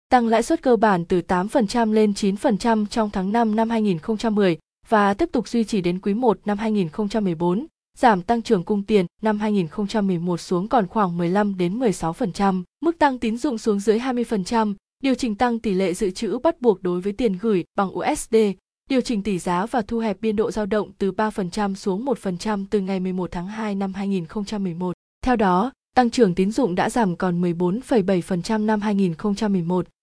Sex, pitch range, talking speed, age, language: female, 185-230 Hz, 185 wpm, 20-39, Vietnamese